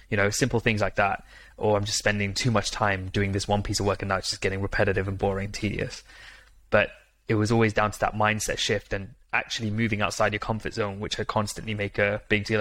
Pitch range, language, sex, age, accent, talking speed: 100-110 Hz, English, male, 20-39, British, 245 wpm